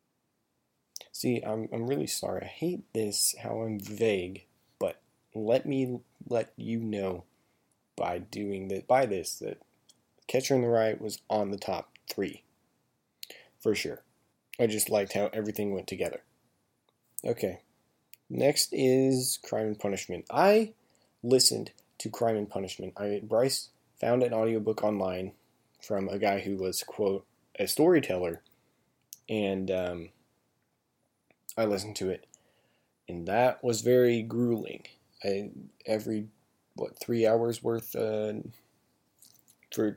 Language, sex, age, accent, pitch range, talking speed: English, male, 20-39, American, 100-115 Hz, 130 wpm